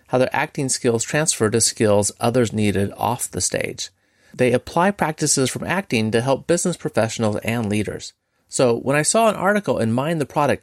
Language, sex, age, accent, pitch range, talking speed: English, male, 30-49, American, 110-155 Hz, 185 wpm